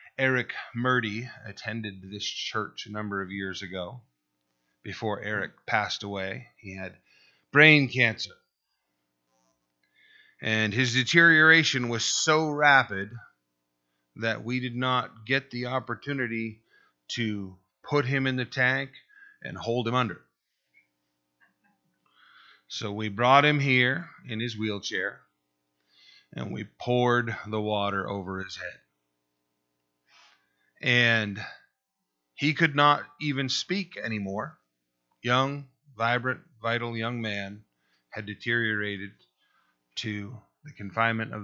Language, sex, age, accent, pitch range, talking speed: English, male, 30-49, American, 90-125 Hz, 110 wpm